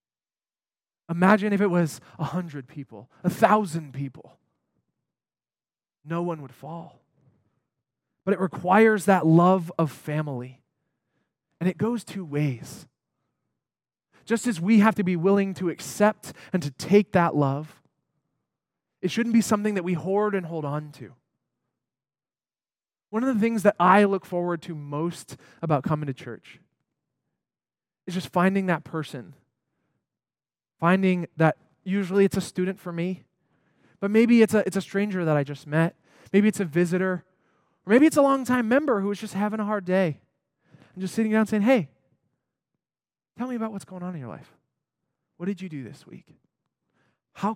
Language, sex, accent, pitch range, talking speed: English, male, American, 145-200 Hz, 160 wpm